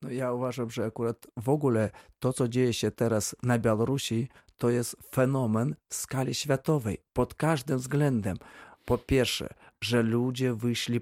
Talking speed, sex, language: 150 wpm, male, Polish